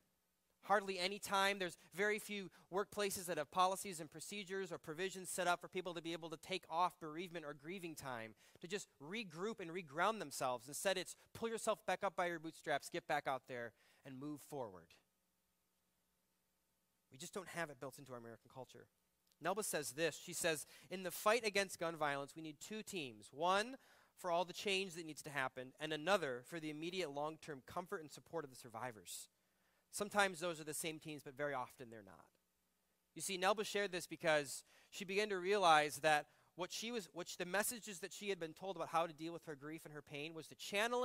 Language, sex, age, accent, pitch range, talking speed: English, male, 30-49, American, 140-190 Hz, 210 wpm